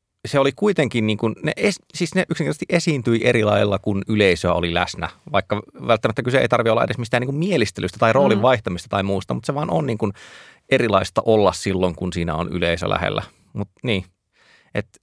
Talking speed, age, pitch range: 200 wpm, 30-49, 90-120 Hz